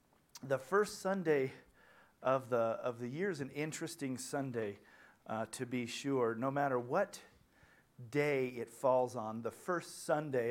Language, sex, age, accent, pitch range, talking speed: English, male, 40-59, American, 130-155 Hz, 150 wpm